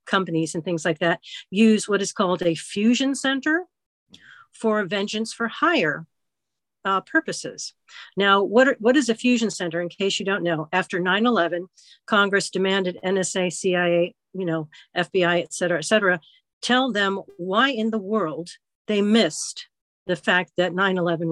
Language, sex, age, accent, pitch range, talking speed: English, female, 50-69, American, 175-230 Hz, 160 wpm